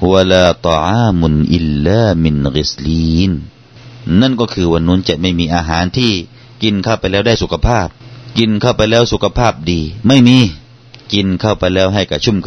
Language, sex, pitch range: Thai, male, 95-120 Hz